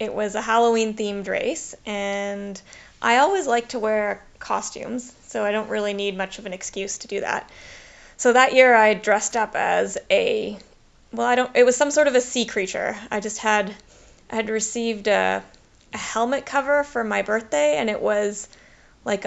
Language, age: English, 20-39